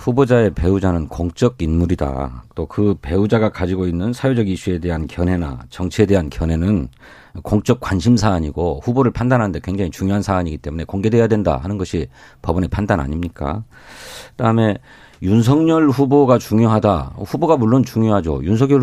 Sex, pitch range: male, 90-130 Hz